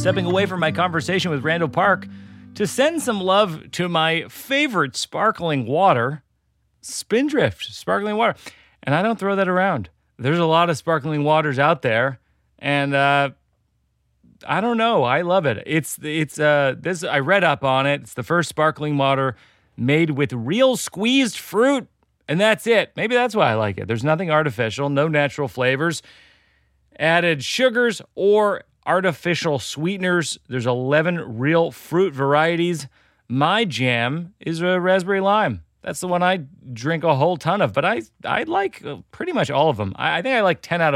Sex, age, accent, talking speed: male, 40-59, American, 170 wpm